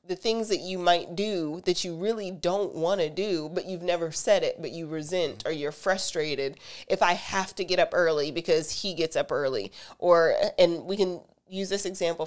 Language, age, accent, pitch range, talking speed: English, 30-49, American, 170-205 Hz, 210 wpm